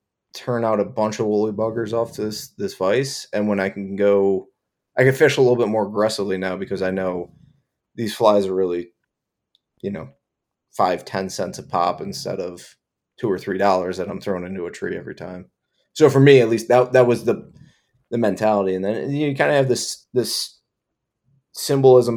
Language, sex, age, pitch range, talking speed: English, male, 20-39, 95-115 Hz, 195 wpm